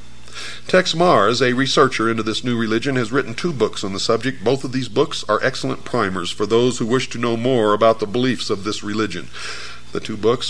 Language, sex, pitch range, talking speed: English, male, 105-135 Hz, 215 wpm